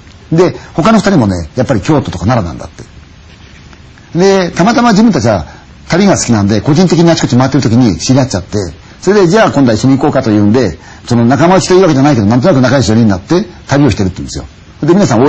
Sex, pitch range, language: male, 95-140 Hz, Chinese